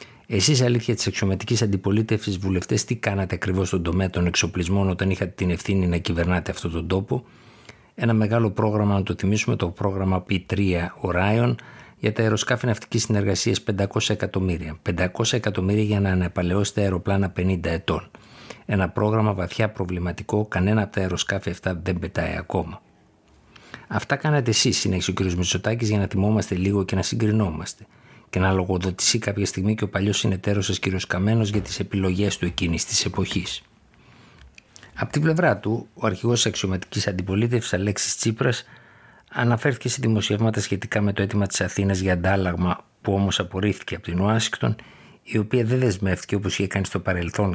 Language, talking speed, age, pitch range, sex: Greek, 160 wpm, 50-69, 95-110 Hz, male